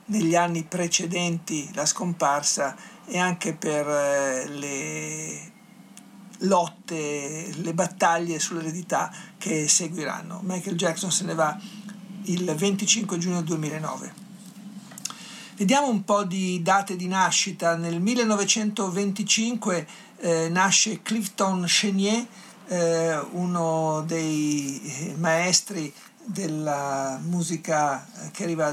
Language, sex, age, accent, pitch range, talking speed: Italian, male, 50-69, native, 160-195 Hz, 95 wpm